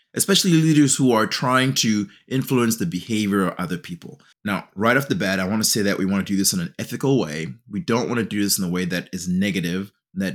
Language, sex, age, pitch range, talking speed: English, male, 30-49, 95-140 Hz, 255 wpm